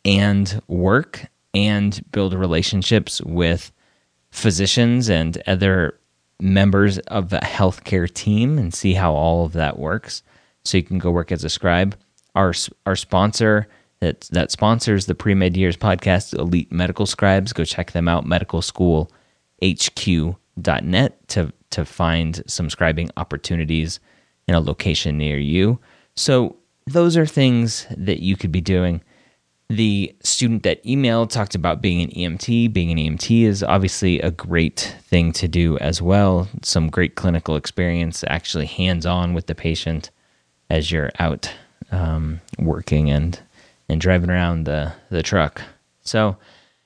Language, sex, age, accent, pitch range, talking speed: English, male, 30-49, American, 80-105 Hz, 140 wpm